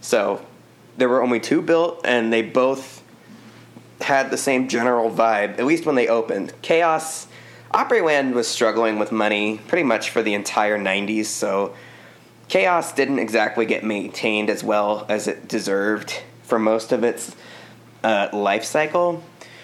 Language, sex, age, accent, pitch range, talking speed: English, male, 20-39, American, 110-135 Hz, 150 wpm